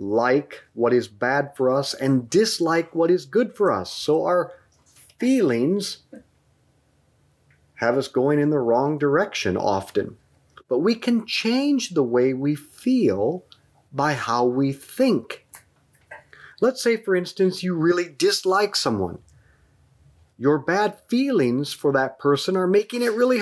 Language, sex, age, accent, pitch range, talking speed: English, male, 40-59, American, 140-235 Hz, 140 wpm